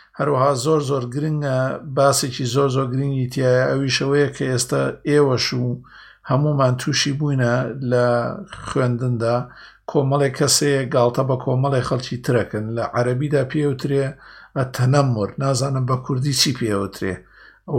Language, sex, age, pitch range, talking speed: Arabic, male, 50-69, 125-155 Hz, 105 wpm